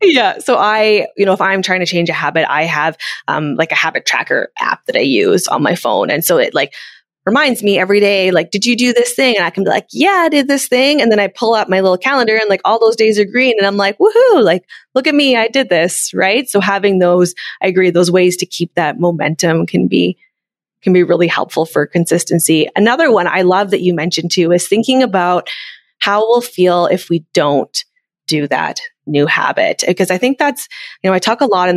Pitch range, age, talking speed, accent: 170-220 Hz, 20-39, 240 wpm, American